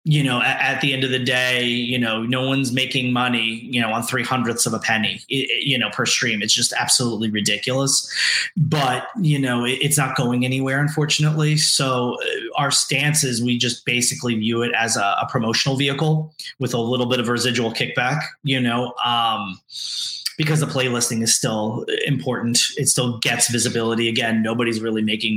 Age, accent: 30-49, American